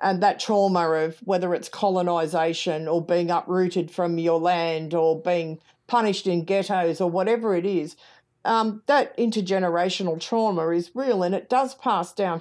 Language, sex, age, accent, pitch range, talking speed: English, female, 50-69, Australian, 165-195 Hz, 160 wpm